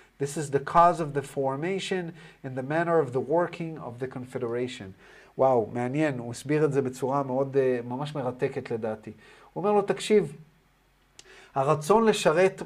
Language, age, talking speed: Hebrew, 30-49, 160 wpm